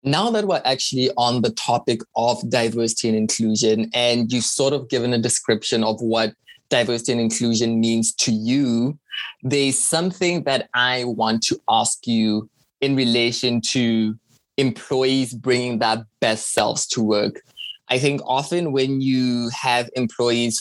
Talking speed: 150 wpm